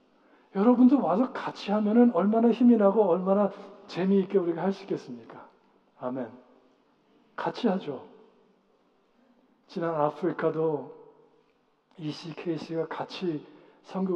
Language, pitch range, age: Korean, 150-210 Hz, 60-79